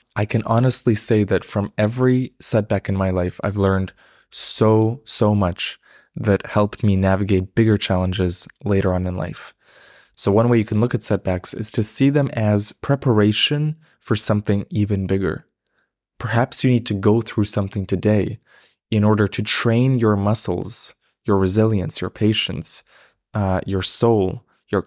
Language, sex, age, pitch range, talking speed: English, male, 20-39, 95-115 Hz, 160 wpm